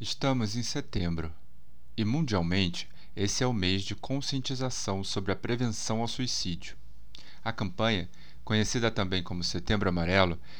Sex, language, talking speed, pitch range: male, Portuguese, 130 wpm, 95-125 Hz